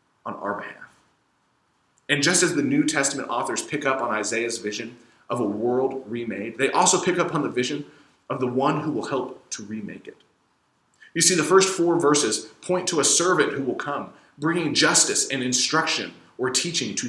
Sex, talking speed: male, 195 wpm